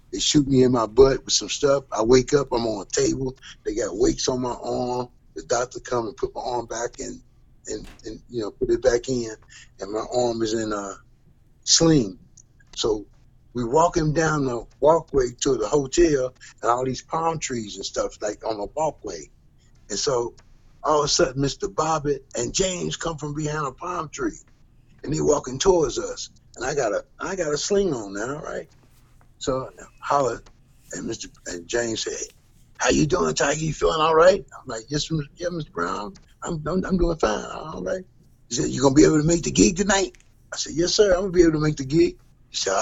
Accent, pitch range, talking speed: American, 125-170 Hz, 215 wpm